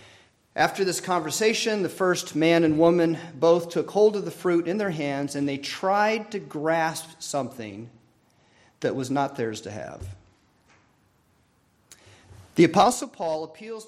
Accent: American